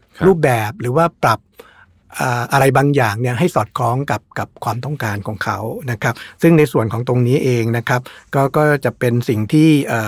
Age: 60-79